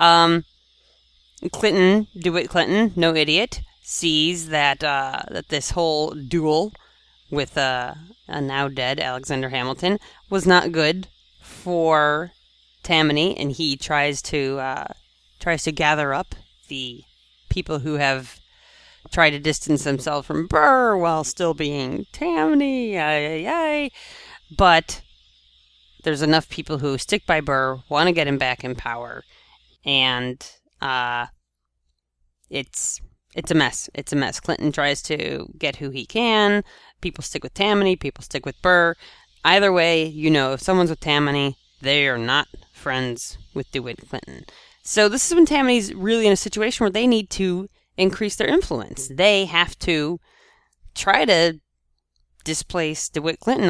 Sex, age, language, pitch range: female, 30-49, English, 135-185 Hz